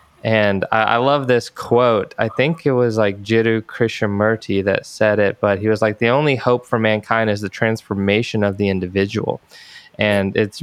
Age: 20-39